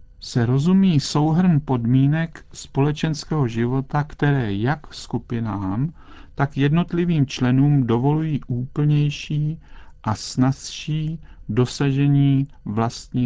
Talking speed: 80 wpm